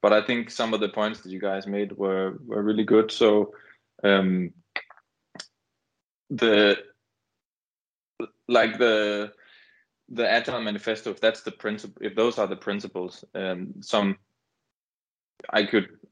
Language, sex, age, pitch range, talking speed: English, male, 20-39, 95-110 Hz, 135 wpm